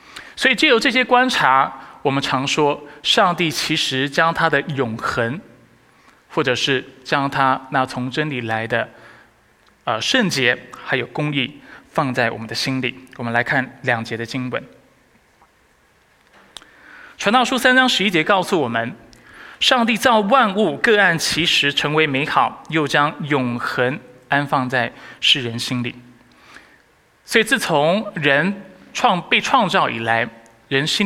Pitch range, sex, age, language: 130-210 Hz, male, 20-39, Chinese